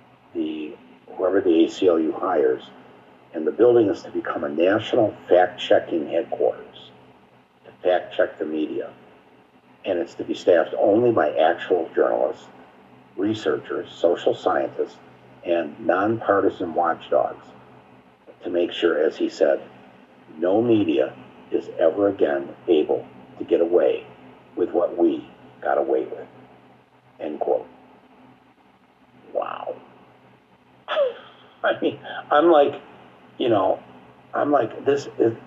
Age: 50-69